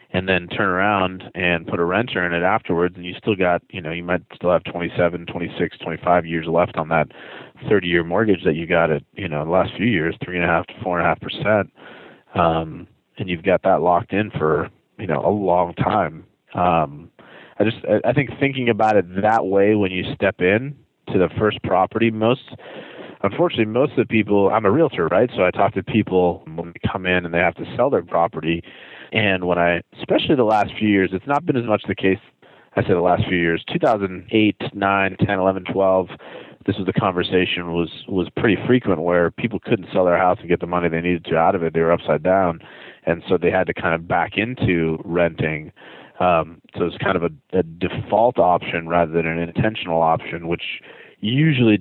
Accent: American